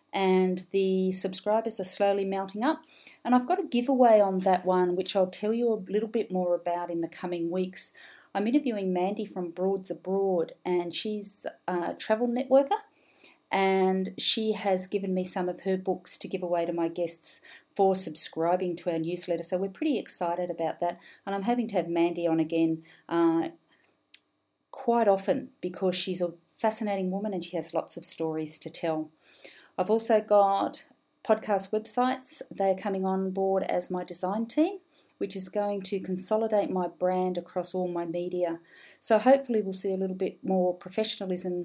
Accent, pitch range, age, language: Australian, 175-215 Hz, 40-59, English